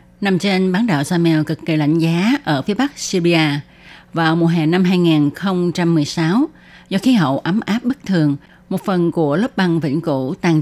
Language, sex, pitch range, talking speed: Vietnamese, female, 155-190 Hz, 185 wpm